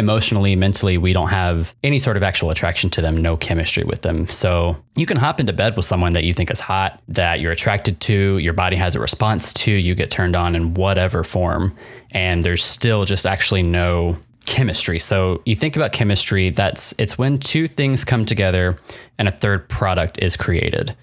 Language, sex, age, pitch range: English, male, 20-39, 95-120 Hz